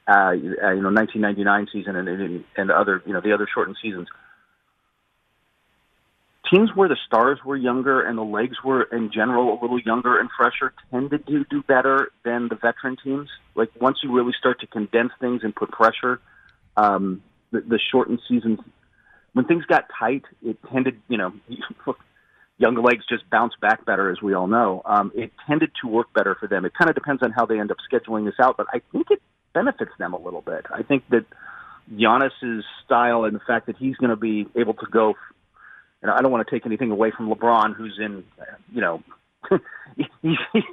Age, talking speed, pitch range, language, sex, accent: 40-59, 195 wpm, 105-135 Hz, English, male, American